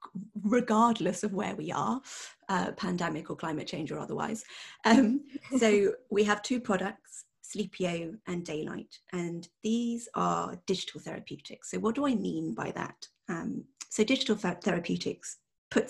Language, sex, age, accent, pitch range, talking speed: English, female, 30-49, British, 175-225 Hz, 145 wpm